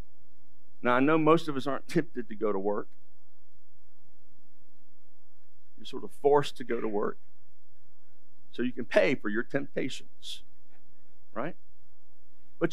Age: 50-69